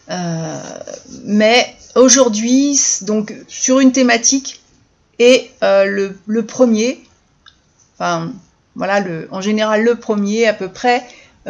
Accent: French